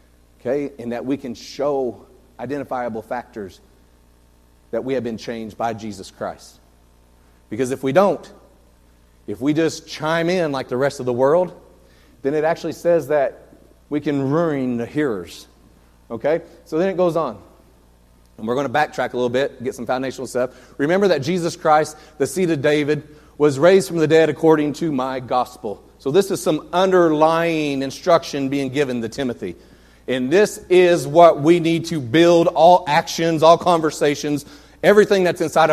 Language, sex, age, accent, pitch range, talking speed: English, male, 40-59, American, 130-170 Hz, 170 wpm